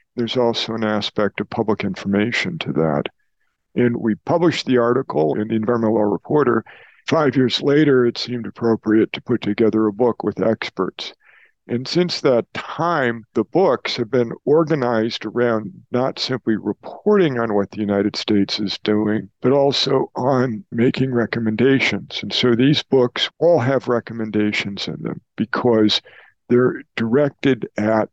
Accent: American